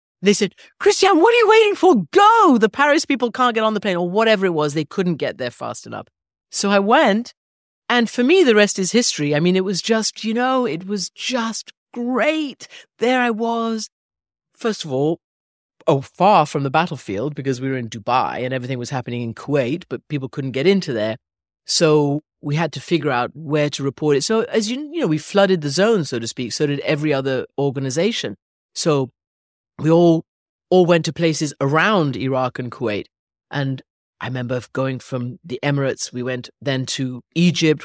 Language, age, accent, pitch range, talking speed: English, 30-49, British, 125-195 Hz, 200 wpm